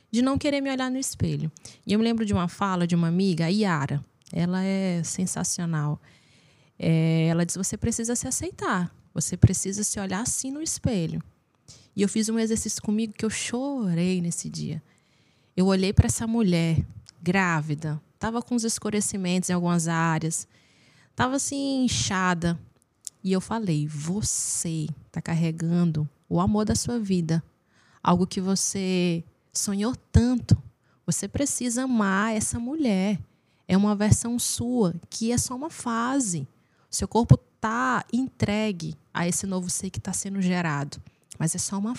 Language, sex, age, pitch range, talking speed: Portuguese, female, 20-39, 170-235 Hz, 155 wpm